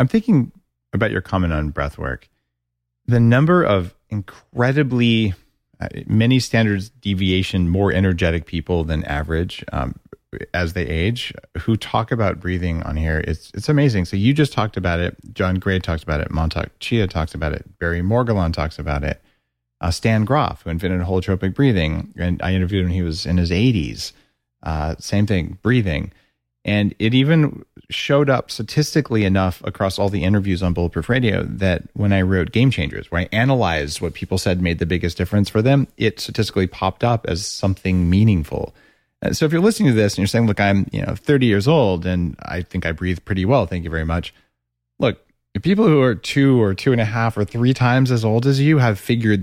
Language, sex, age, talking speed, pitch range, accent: English, male, 30-49, 195 wpm, 85-115 Hz, American